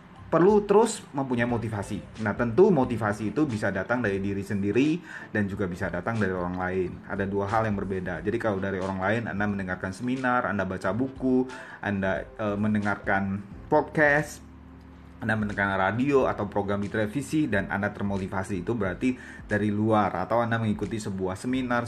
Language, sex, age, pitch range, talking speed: Indonesian, male, 30-49, 100-130 Hz, 160 wpm